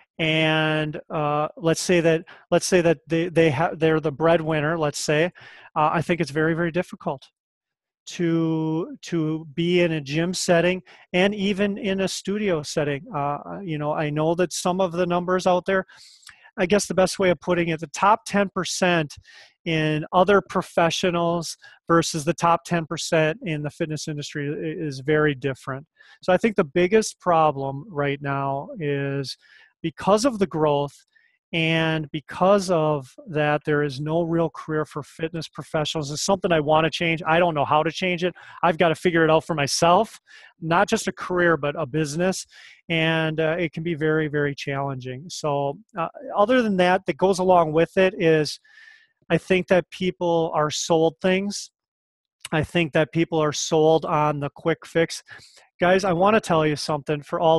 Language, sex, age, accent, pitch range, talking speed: English, male, 30-49, American, 155-180 Hz, 185 wpm